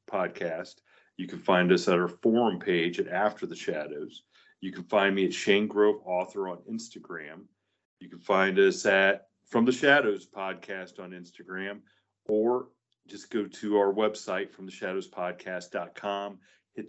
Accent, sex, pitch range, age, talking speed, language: American, male, 90-110 Hz, 40-59, 155 wpm, English